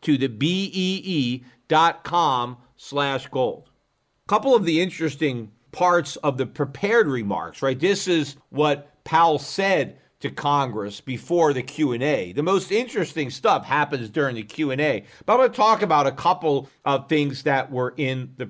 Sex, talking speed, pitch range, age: male, 150 wpm, 135-185 Hz, 50-69